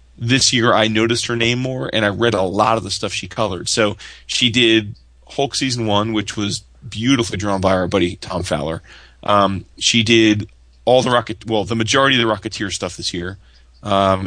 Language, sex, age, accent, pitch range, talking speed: English, male, 30-49, American, 95-115 Hz, 200 wpm